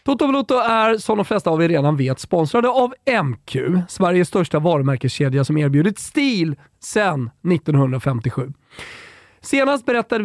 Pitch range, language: 135-195 Hz, Swedish